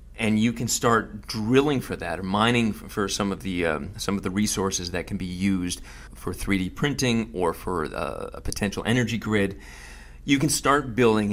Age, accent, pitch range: 40-59, American, 85-120 Hz